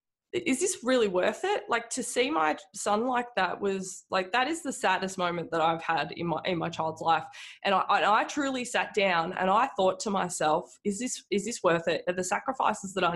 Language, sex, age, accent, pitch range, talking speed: English, female, 20-39, Australian, 180-245 Hz, 230 wpm